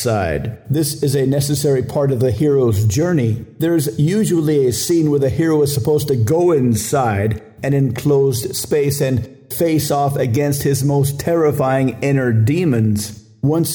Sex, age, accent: male, 50-69, American